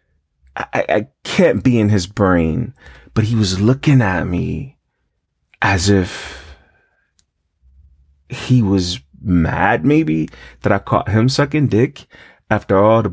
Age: 30-49